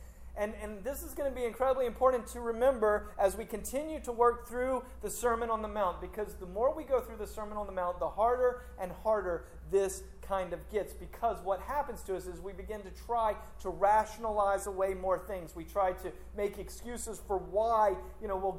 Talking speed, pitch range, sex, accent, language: 215 wpm, 175-225 Hz, male, American, English